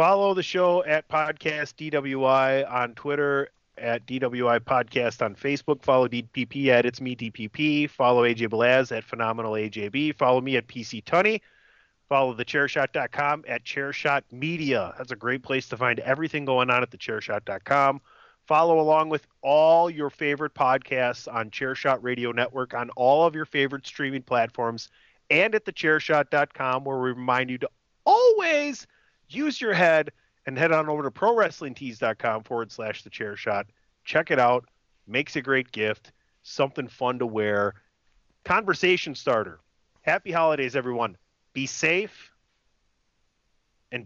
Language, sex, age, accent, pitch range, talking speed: English, male, 30-49, American, 115-145 Hz, 150 wpm